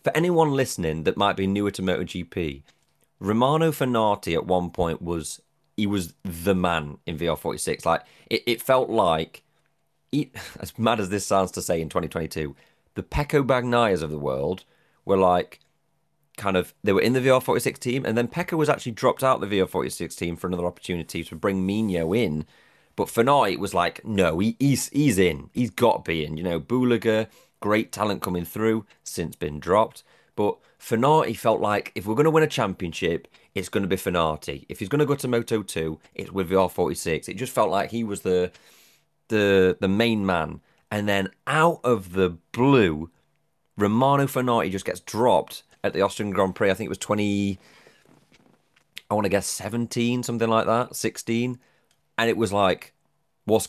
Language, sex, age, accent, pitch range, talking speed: English, male, 30-49, British, 90-125 Hz, 185 wpm